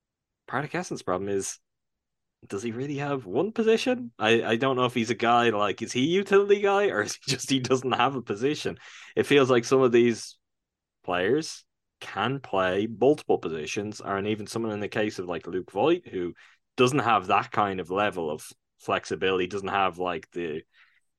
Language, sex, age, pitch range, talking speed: English, male, 10-29, 90-120 Hz, 195 wpm